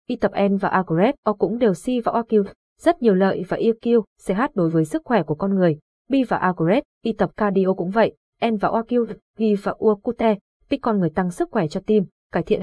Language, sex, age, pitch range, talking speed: Vietnamese, female, 20-39, 185-230 Hz, 240 wpm